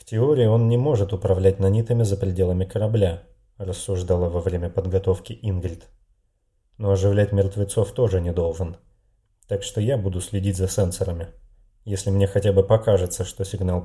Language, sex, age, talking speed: Russian, male, 30-49, 150 wpm